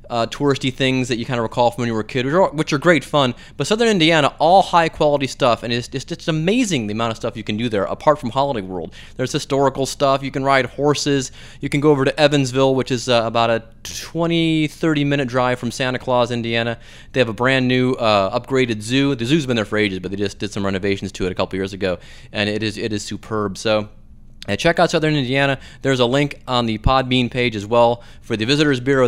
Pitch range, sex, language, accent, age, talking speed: 115-145 Hz, male, English, American, 20-39, 240 wpm